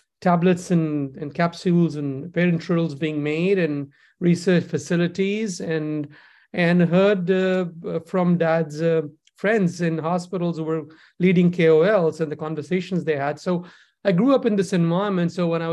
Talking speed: 155 wpm